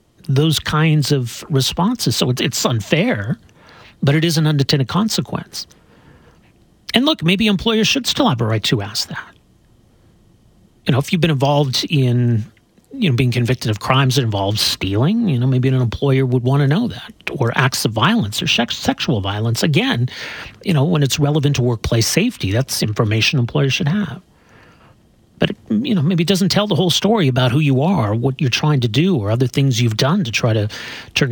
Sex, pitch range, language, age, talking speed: male, 120-170 Hz, English, 40-59, 190 wpm